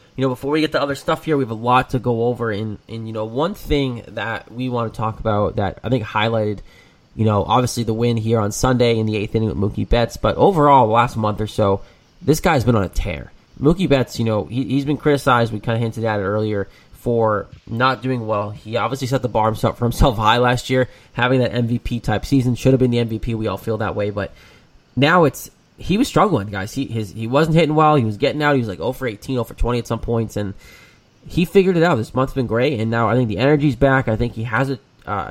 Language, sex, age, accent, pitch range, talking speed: English, male, 20-39, American, 110-135 Hz, 265 wpm